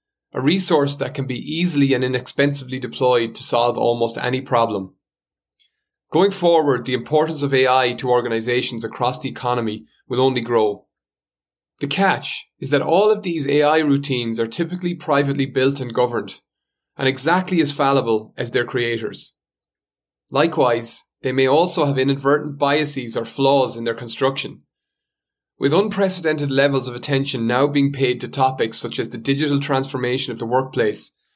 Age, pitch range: 30-49, 125-145 Hz